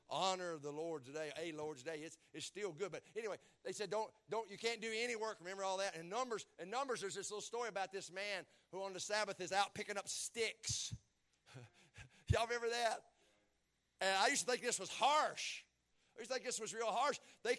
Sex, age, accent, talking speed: male, 50-69, American, 220 wpm